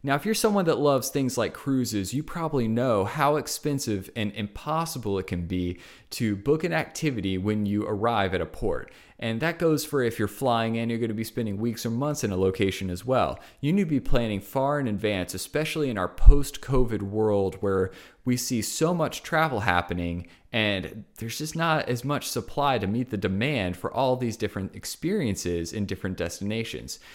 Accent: American